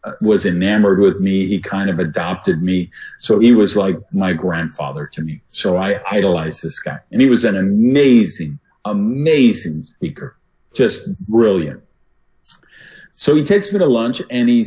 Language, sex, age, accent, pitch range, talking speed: English, male, 50-69, American, 115-180 Hz, 160 wpm